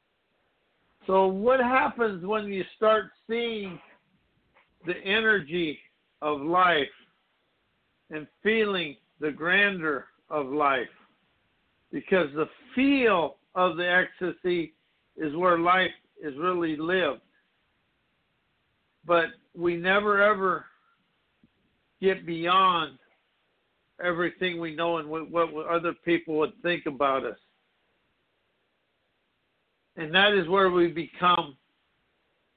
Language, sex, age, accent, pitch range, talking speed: English, male, 60-79, American, 170-210 Hz, 95 wpm